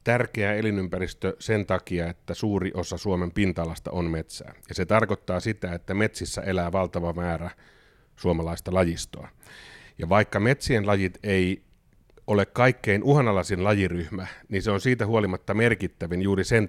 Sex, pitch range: male, 85-105 Hz